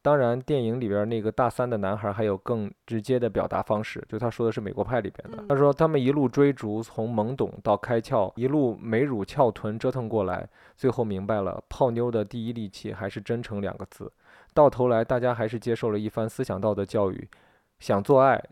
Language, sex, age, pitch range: Chinese, male, 20-39, 105-125 Hz